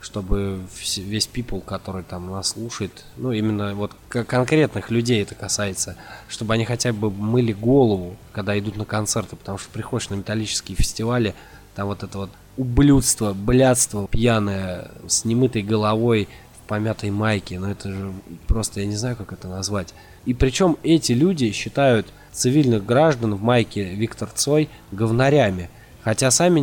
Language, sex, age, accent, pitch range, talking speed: Russian, male, 20-39, native, 95-120 Hz, 150 wpm